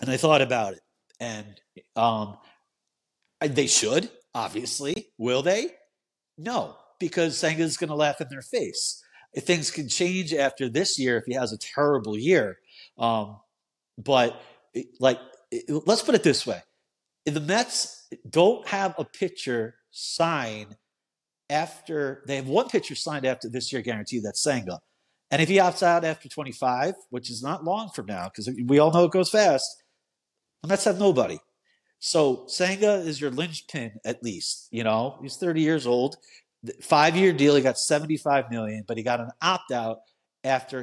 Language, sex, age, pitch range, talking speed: English, male, 50-69, 120-180 Hz, 170 wpm